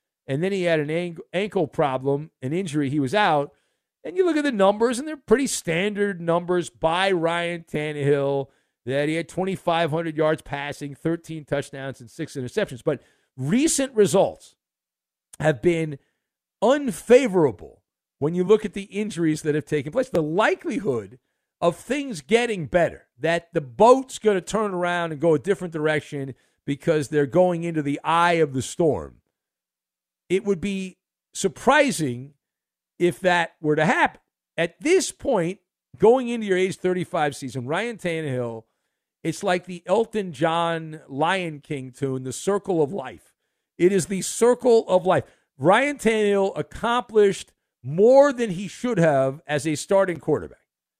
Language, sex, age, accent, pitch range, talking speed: English, male, 50-69, American, 150-215 Hz, 155 wpm